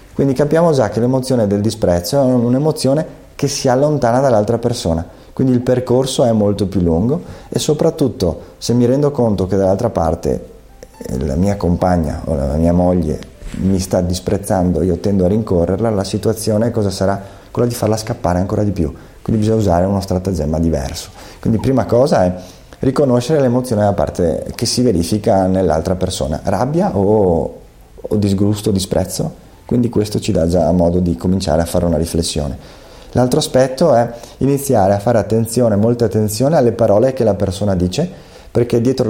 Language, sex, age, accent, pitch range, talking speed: Italian, male, 30-49, native, 95-120 Hz, 165 wpm